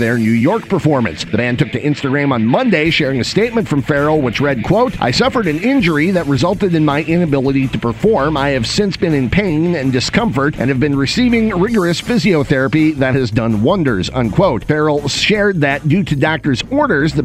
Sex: male